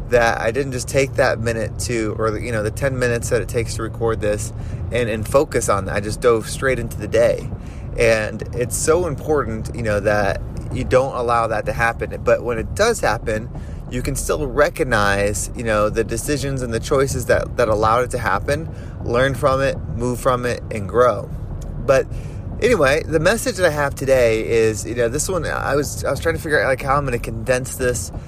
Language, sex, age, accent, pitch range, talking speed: English, male, 20-39, American, 110-130 Hz, 220 wpm